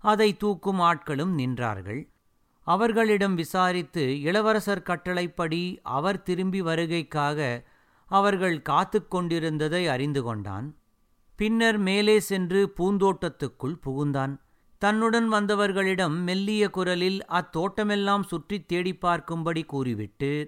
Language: Tamil